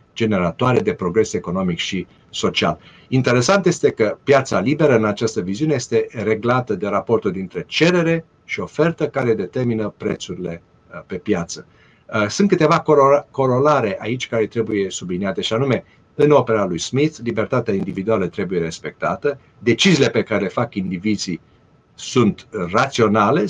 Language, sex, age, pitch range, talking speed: Romanian, male, 50-69, 100-145 Hz, 135 wpm